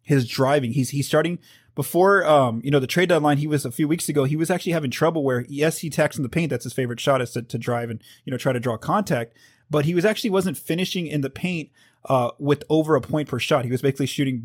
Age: 20-39